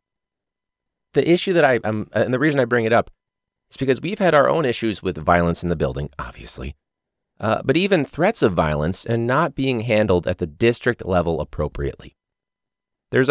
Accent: American